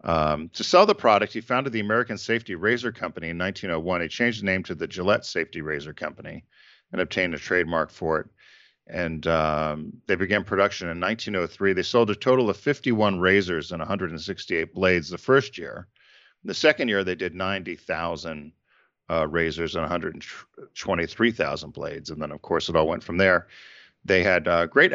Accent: American